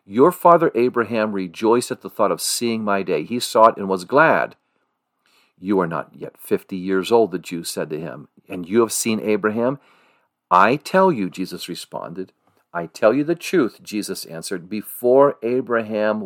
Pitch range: 100-120 Hz